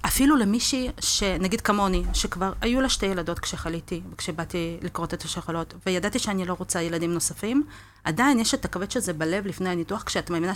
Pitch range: 170-220 Hz